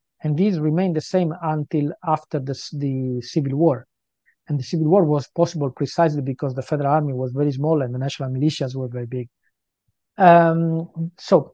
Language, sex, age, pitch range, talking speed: English, male, 40-59, 140-175 Hz, 175 wpm